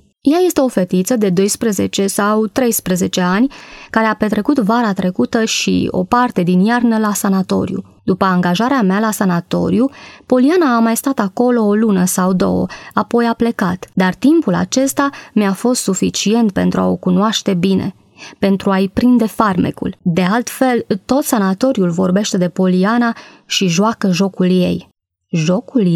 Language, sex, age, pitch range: Romanian, female, 20-39, 185-235 Hz